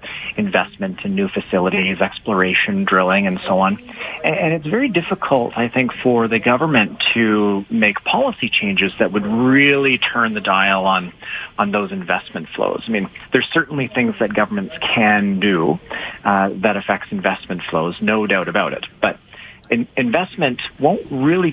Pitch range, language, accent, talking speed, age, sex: 95-150 Hz, English, American, 155 wpm, 40-59, male